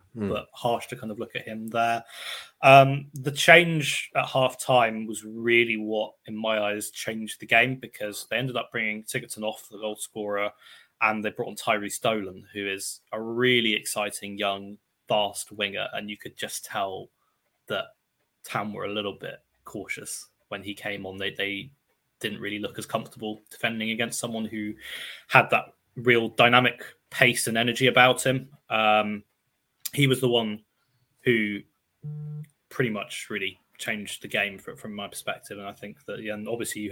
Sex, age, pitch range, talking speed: male, 20-39, 105-125 Hz, 170 wpm